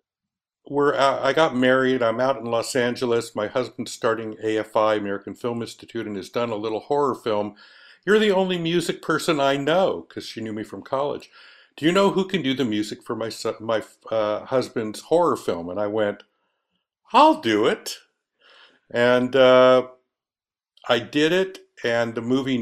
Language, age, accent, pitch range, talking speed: English, 60-79, American, 105-145 Hz, 170 wpm